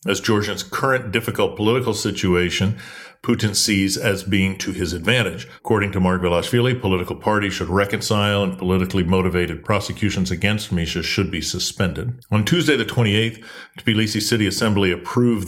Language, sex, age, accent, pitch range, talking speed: English, male, 50-69, American, 95-115 Hz, 145 wpm